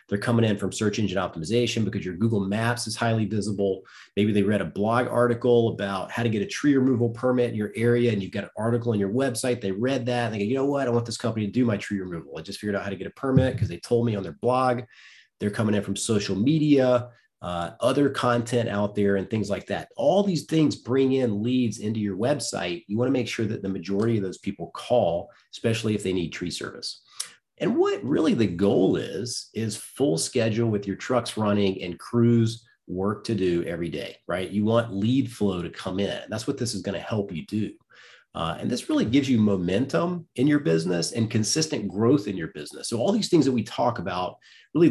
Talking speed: 235 wpm